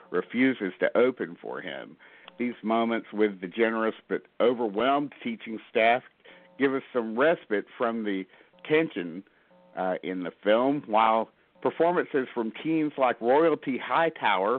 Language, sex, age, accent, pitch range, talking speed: English, male, 50-69, American, 100-135 Hz, 130 wpm